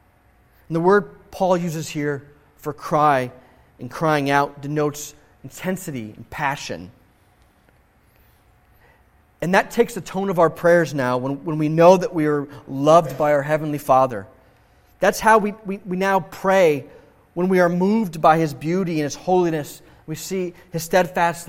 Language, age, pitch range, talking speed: English, 30-49, 125-175 Hz, 160 wpm